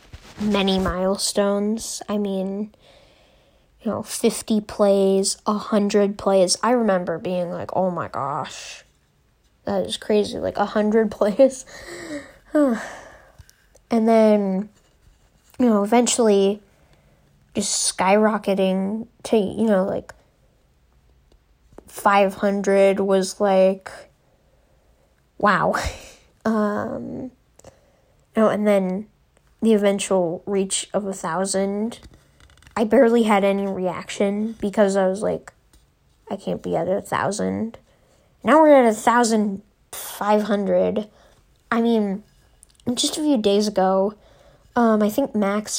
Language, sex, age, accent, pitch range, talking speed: English, female, 10-29, American, 195-225 Hz, 105 wpm